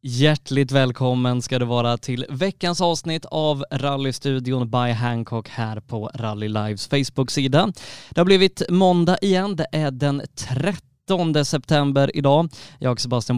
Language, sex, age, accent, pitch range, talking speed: Swedish, male, 20-39, native, 120-155 Hz, 140 wpm